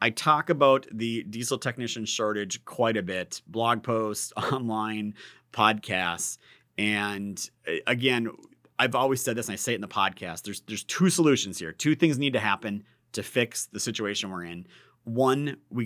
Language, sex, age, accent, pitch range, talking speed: English, male, 30-49, American, 105-135 Hz, 170 wpm